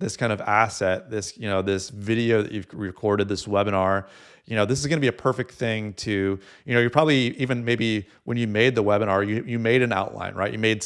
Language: English